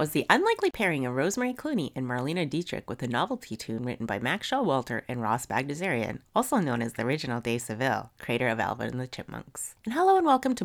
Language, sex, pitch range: English, female, 125-200 Hz